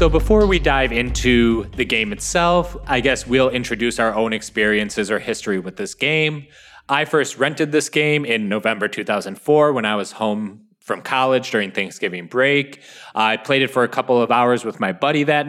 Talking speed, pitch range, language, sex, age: 195 wpm, 115-150 Hz, English, male, 20-39